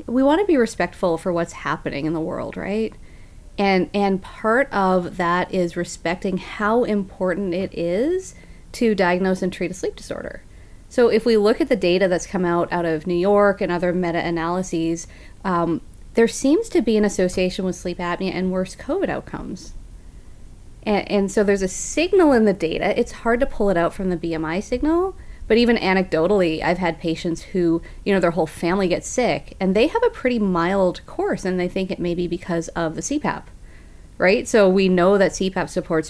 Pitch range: 170-205 Hz